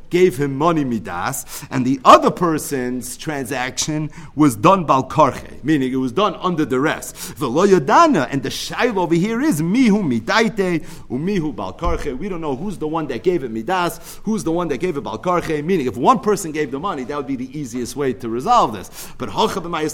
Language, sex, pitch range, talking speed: English, male, 125-180 Hz, 195 wpm